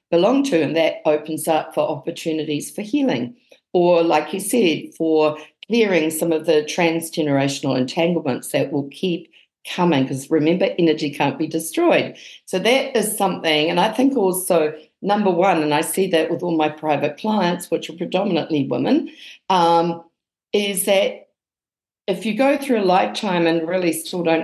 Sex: female